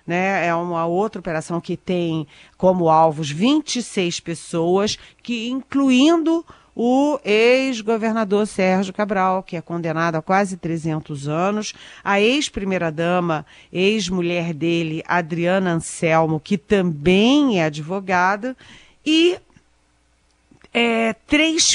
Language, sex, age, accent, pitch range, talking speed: Portuguese, female, 40-59, Brazilian, 175-240 Hz, 95 wpm